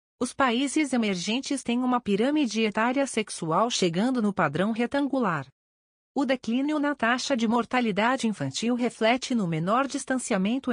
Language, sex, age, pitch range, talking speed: Portuguese, female, 40-59, 190-260 Hz, 130 wpm